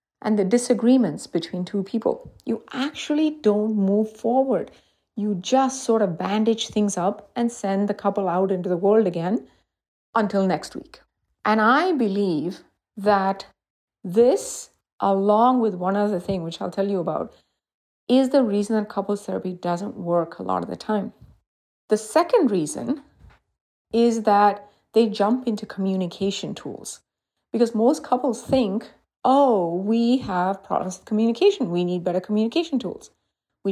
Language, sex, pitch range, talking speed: English, female, 190-255 Hz, 150 wpm